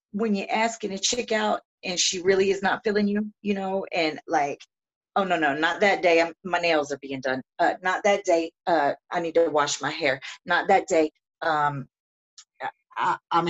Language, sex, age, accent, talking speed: English, female, 40-59, American, 195 wpm